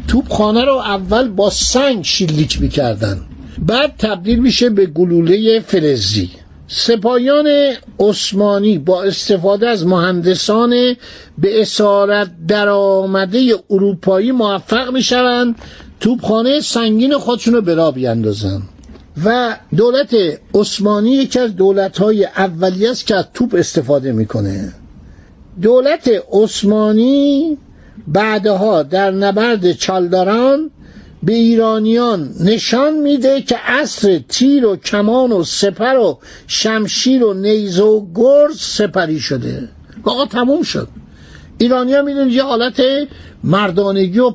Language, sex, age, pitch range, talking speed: Persian, male, 60-79, 190-240 Hz, 110 wpm